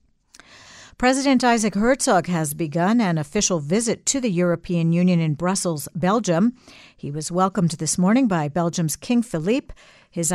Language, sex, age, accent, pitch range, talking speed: English, female, 60-79, American, 165-220 Hz, 145 wpm